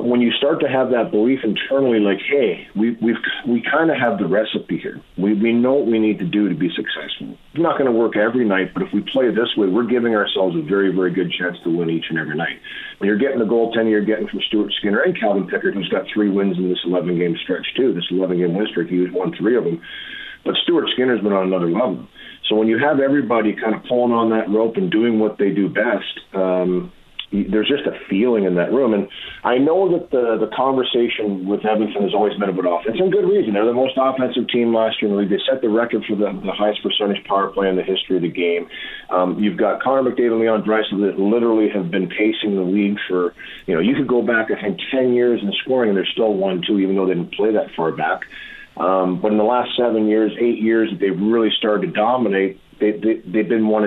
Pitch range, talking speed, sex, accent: 95-120 Hz, 250 wpm, male, American